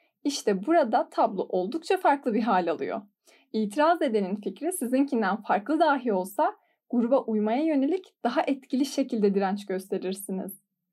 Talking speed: 125 wpm